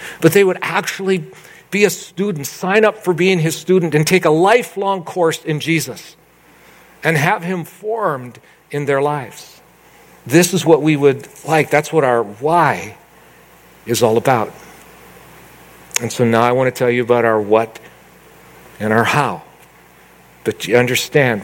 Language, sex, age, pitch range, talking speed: English, male, 50-69, 115-155 Hz, 160 wpm